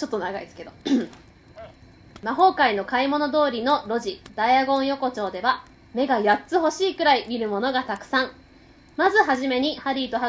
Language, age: Japanese, 20-39